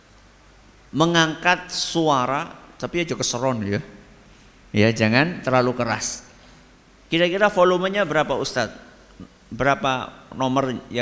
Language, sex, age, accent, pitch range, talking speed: Indonesian, male, 50-69, native, 115-155 Hz, 100 wpm